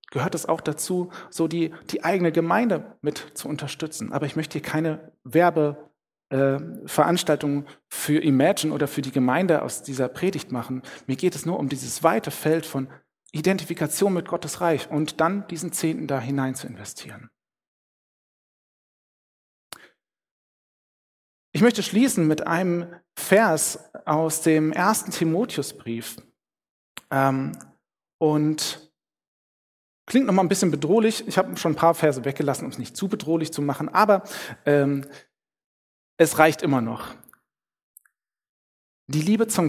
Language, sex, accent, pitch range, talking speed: German, male, German, 145-175 Hz, 135 wpm